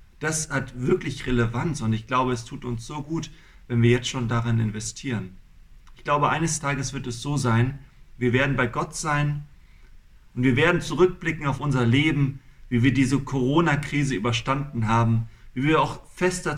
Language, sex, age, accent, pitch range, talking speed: German, male, 40-59, German, 120-150 Hz, 175 wpm